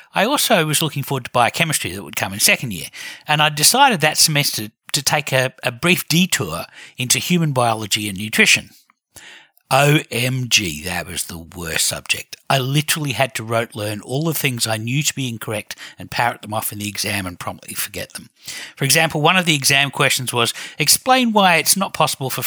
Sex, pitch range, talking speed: male, 115-155 Hz, 200 wpm